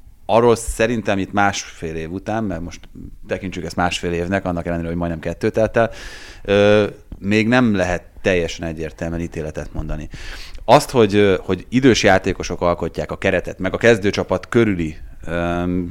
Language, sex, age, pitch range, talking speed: Hungarian, male, 30-49, 90-110 Hz, 145 wpm